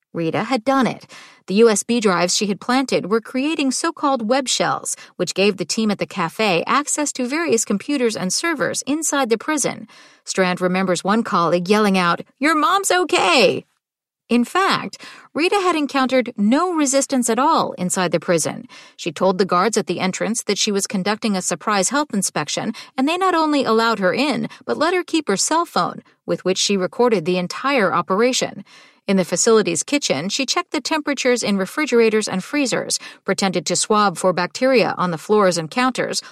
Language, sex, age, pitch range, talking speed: English, female, 40-59, 190-275 Hz, 180 wpm